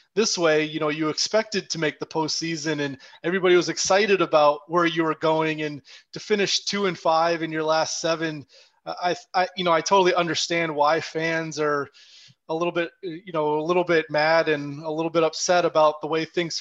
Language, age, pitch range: English, 20-39, 155-175 Hz